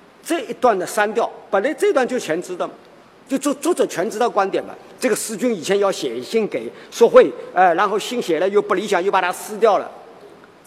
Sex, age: male, 50-69